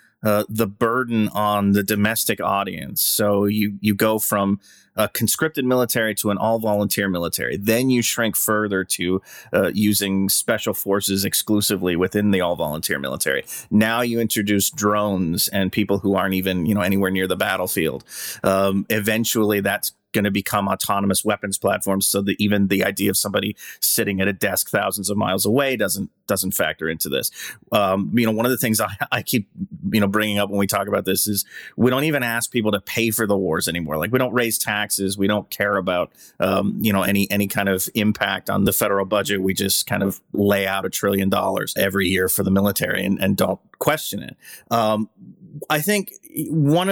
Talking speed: 195 wpm